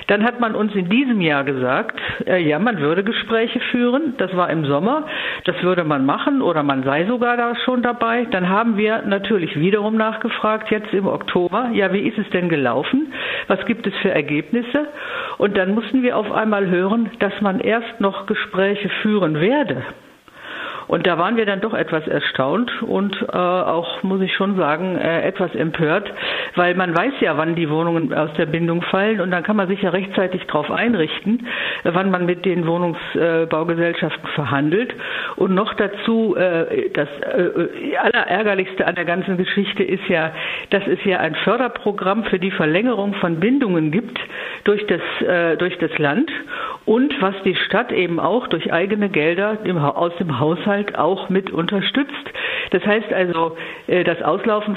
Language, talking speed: German, 170 wpm